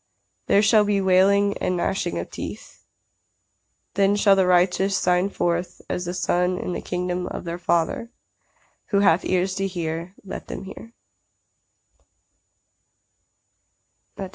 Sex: female